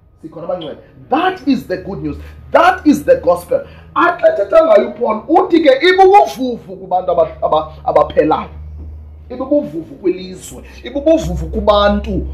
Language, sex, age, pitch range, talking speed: English, male, 30-49, 200-305 Hz, 110 wpm